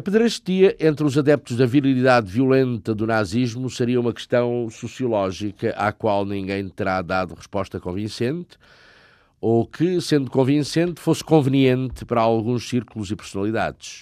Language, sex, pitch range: Portuguese, male, 110-145 Hz